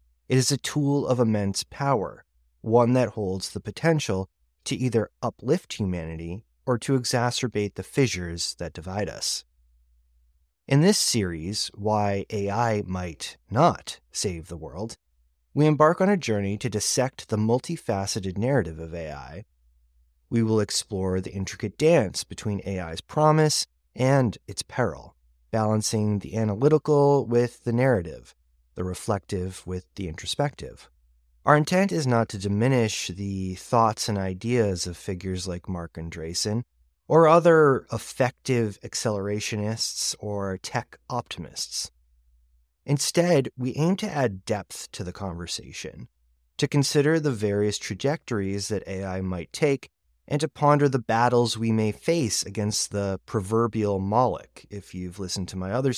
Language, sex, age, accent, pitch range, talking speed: English, male, 30-49, American, 90-125 Hz, 135 wpm